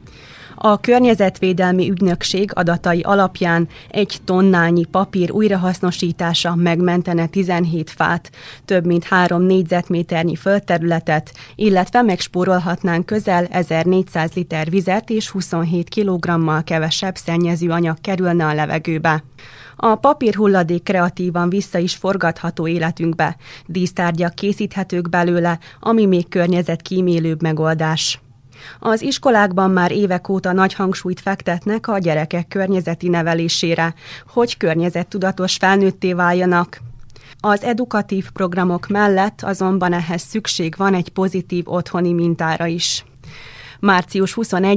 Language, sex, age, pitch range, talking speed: Hungarian, female, 20-39, 170-190 Hz, 100 wpm